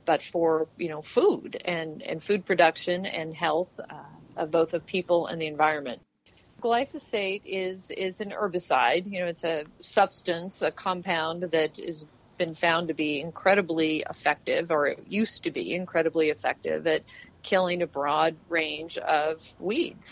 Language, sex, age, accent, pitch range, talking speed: English, female, 40-59, American, 160-185 Hz, 160 wpm